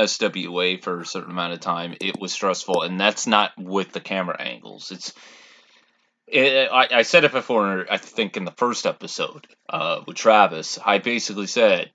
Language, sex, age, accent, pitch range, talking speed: English, male, 30-49, American, 95-125 Hz, 180 wpm